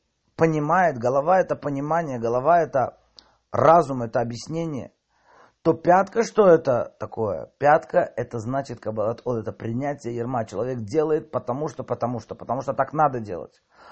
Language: Russian